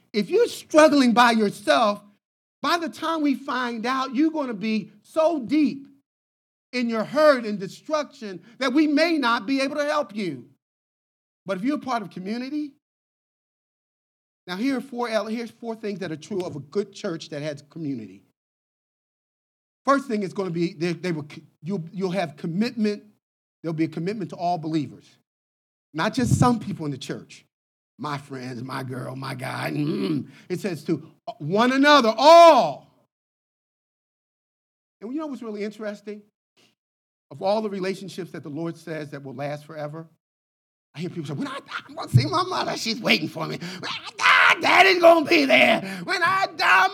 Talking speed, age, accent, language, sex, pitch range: 180 wpm, 40-59, American, English, male, 160-265 Hz